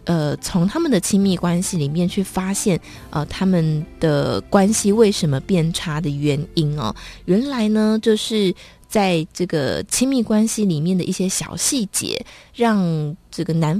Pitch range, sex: 160-210 Hz, female